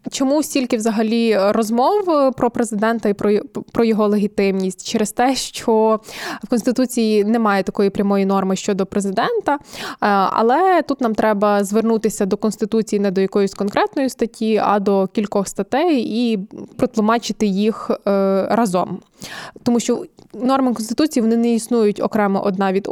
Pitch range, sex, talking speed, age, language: 205-245 Hz, female, 135 wpm, 20-39, Ukrainian